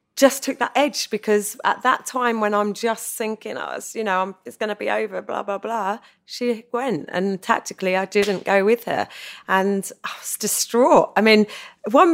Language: English